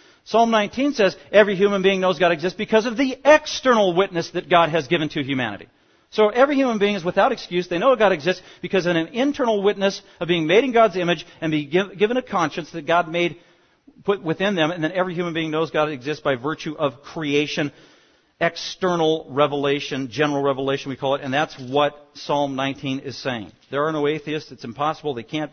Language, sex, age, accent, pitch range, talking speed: English, male, 40-59, American, 145-195 Hz, 205 wpm